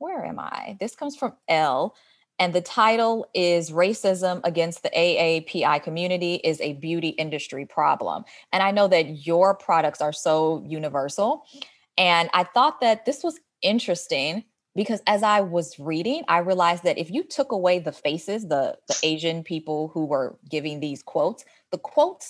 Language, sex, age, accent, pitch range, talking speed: English, female, 20-39, American, 155-190 Hz, 165 wpm